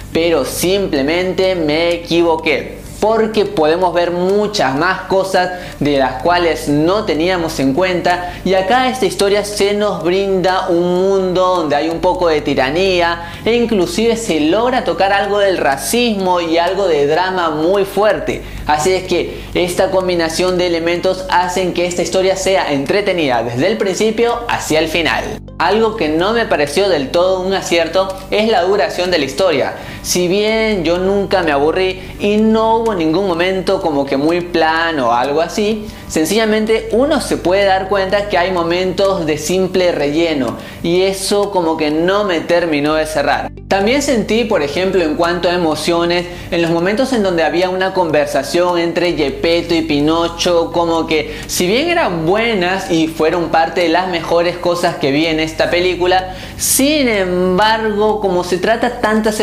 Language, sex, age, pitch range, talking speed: Spanish, male, 20-39, 165-195 Hz, 165 wpm